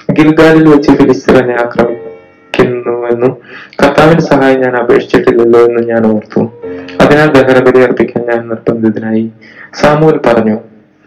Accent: native